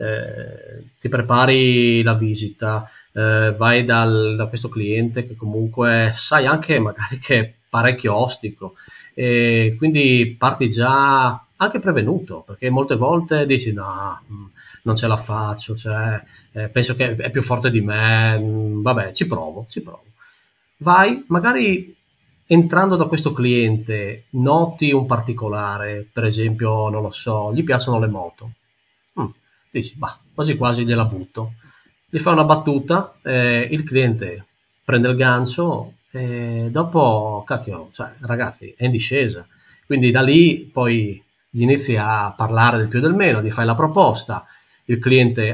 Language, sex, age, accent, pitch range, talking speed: Italian, male, 30-49, native, 110-130 Hz, 145 wpm